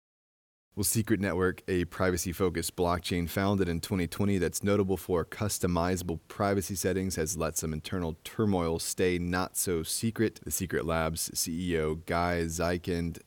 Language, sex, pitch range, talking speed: English, male, 85-95 Hz, 125 wpm